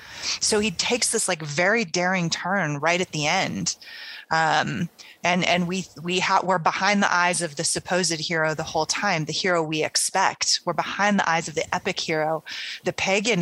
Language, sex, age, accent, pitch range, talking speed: English, female, 30-49, American, 165-205 Hz, 190 wpm